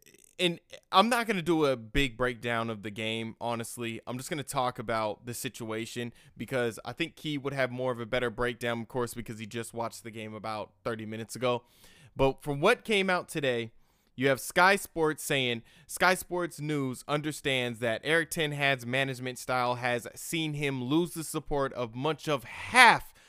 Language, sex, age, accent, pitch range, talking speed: English, male, 20-39, American, 120-155 Hz, 190 wpm